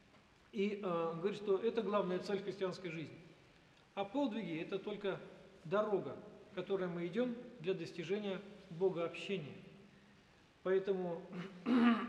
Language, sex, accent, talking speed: Russian, male, native, 115 wpm